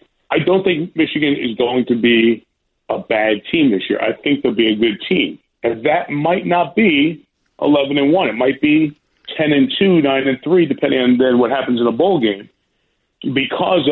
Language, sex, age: English, male, 40-59